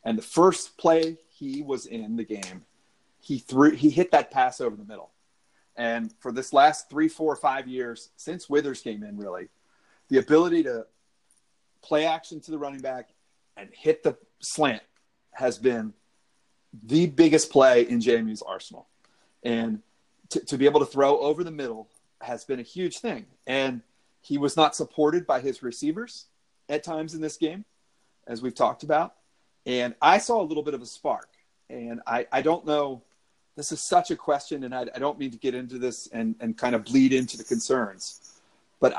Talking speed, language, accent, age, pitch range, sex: 185 wpm, English, American, 30-49, 125-175 Hz, male